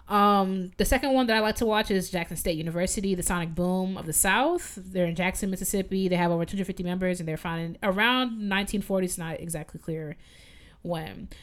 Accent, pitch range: American, 175-220 Hz